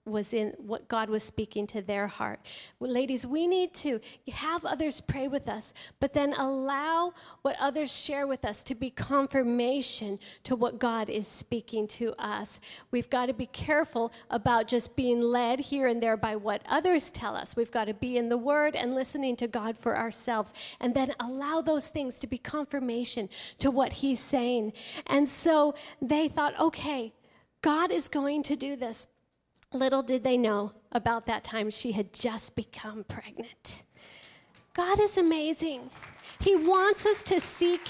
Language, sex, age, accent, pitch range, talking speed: English, female, 40-59, American, 240-325 Hz, 175 wpm